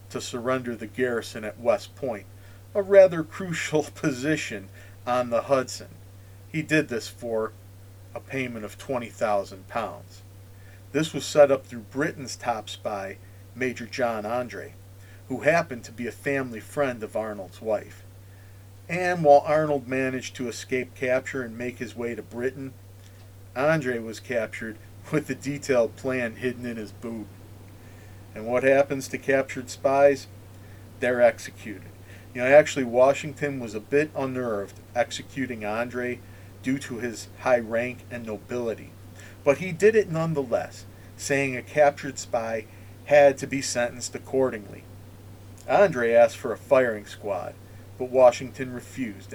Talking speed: 140 wpm